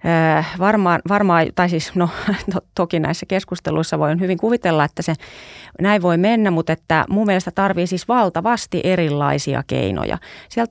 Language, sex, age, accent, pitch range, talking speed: Finnish, female, 30-49, native, 145-175 Hz, 150 wpm